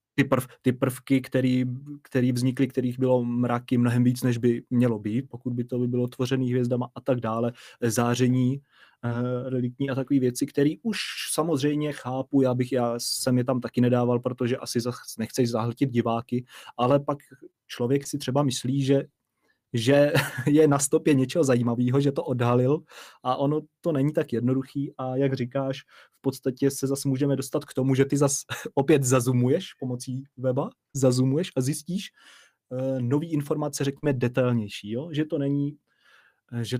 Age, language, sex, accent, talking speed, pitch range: 20-39, Czech, male, native, 165 wpm, 125-140 Hz